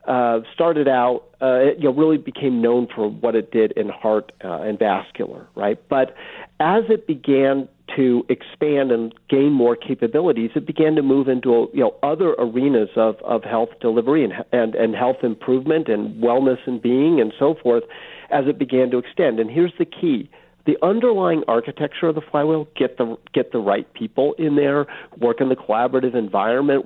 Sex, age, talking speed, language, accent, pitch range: male, 50-69, 185 wpm, English, American, 120-140 Hz